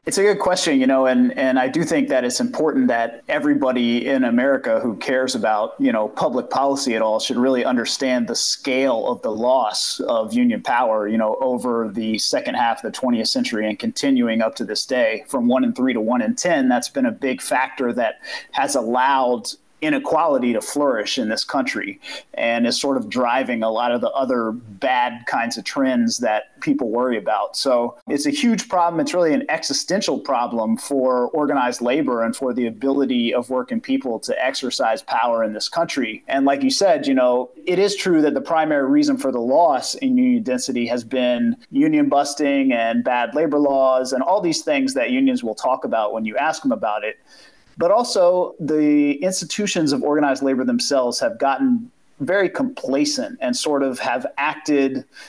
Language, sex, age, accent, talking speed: English, male, 30-49, American, 195 wpm